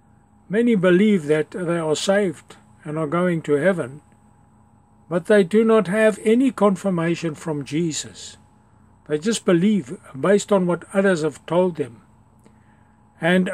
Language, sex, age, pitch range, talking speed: English, male, 60-79, 115-190 Hz, 135 wpm